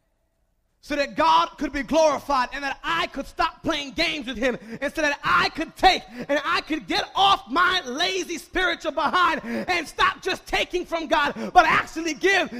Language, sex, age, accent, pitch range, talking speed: English, male, 30-49, American, 290-370 Hz, 185 wpm